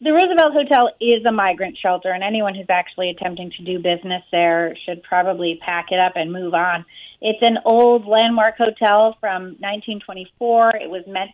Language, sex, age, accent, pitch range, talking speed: English, female, 30-49, American, 180-215 Hz, 180 wpm